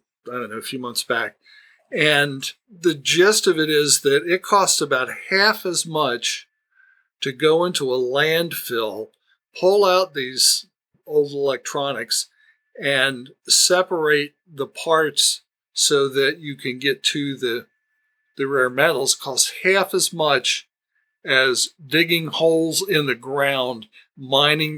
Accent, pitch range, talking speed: American, 140-210 Hz, 135 wpm